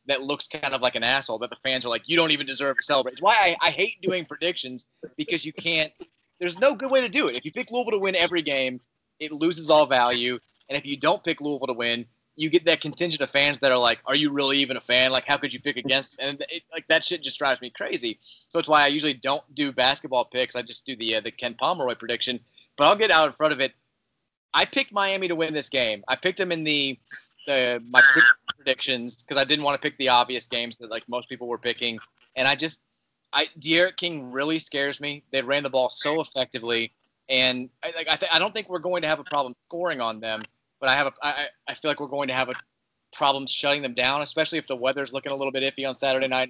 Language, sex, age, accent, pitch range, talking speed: English, male, 30-49, American, 125-155 Hz, 265 wpm